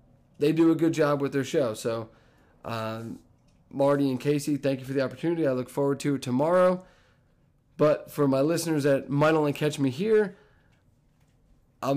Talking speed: 175 wpm